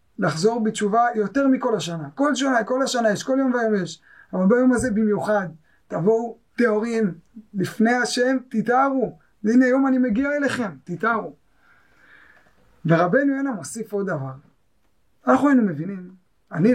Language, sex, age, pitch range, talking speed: Hebrew, male, 30-49, 190-250 Hz, 135 wpm